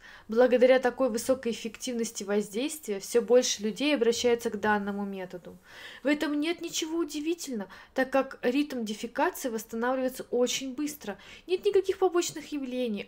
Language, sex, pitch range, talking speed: Russian, female, 215-290 Hz, 130 wpm